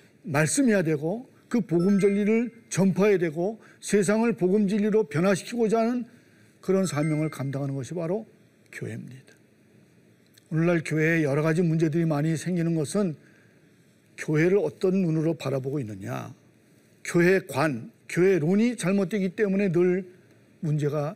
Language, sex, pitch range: Korean, male, 160-210 Hz